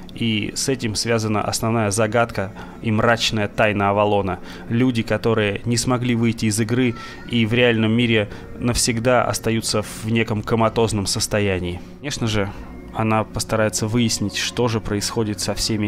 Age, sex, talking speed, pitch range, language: 20-39, male, 140 wpm, 100-120 Hz, Russian